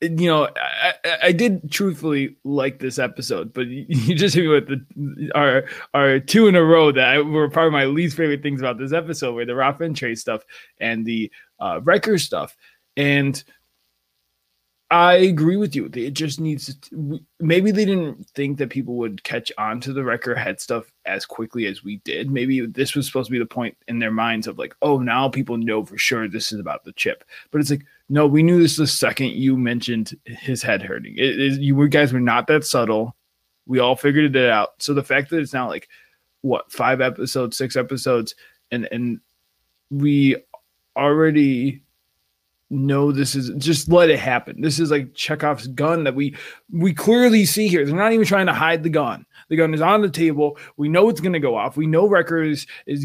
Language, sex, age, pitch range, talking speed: English, male, 20-39, 125-160 Hz, 210 wpm